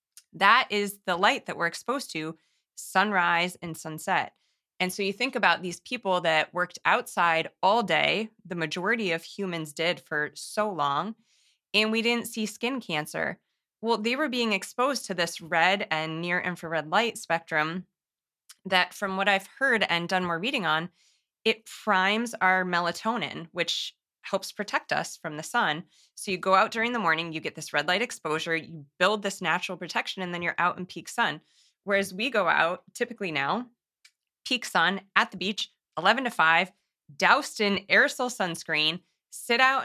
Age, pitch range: 20-39, 165-210 Hz